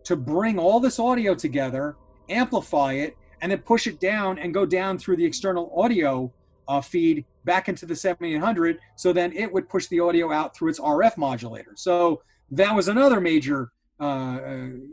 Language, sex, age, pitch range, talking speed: English, male, 30-49, 145-190 Hz, 175 wpm